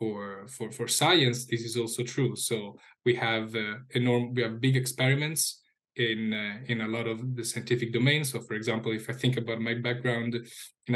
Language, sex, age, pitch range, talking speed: English, male, 10-29, 110-125 Hz, 195 wpm